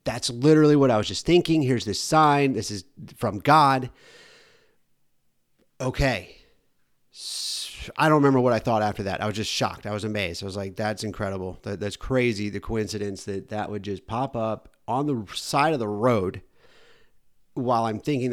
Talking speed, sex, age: 175 wpm, male, 30-49